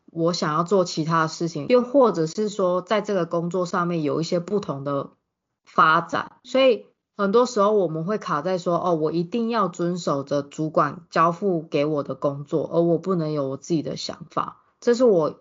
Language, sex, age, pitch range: Chinese, female, 20-39, 155-195 Hz